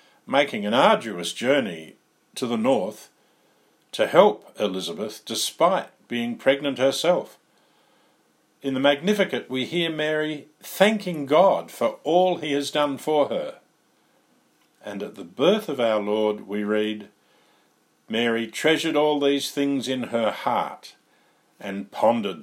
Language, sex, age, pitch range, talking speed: English, male, 50-69, 105-150 Hz, 130 wpm